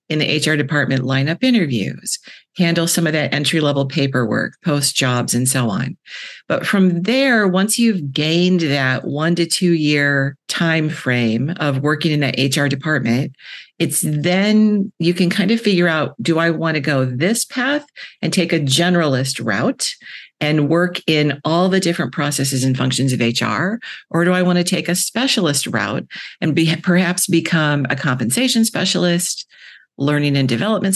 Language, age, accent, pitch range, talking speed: English, 50-69, American, 140-180 Hz, 165 wpm